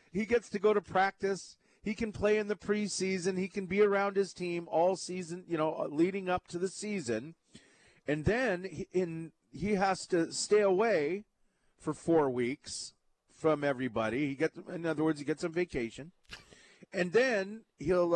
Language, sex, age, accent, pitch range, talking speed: English, male, 40-59, American, 145-210 Hz, 170 wpm